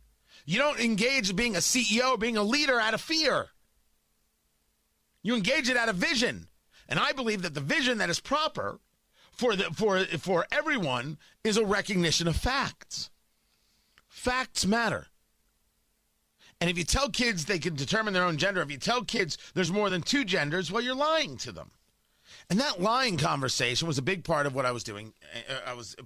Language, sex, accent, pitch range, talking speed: English, male, American, 145-235 Hz, 185 wpm